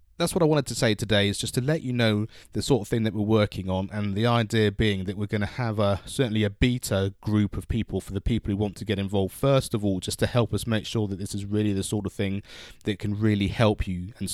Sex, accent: male, British